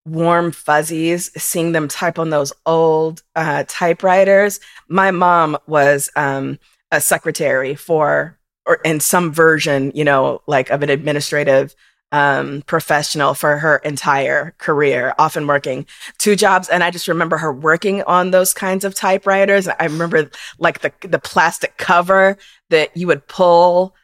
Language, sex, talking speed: English, female, 145 wpm